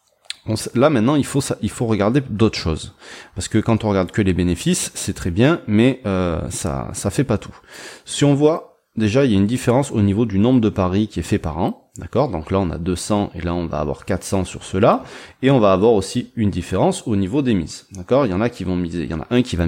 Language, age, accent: French, 30-49, French